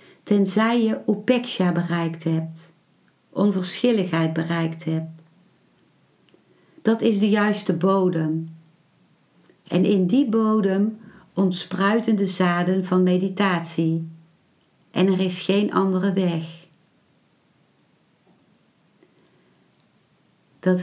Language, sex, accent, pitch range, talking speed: Dutch, female, Dutch, 165-200 Hz, 85 wpm